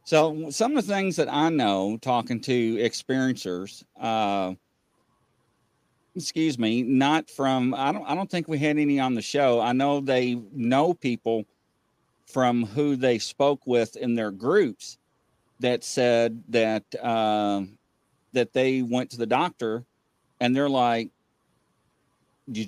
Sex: male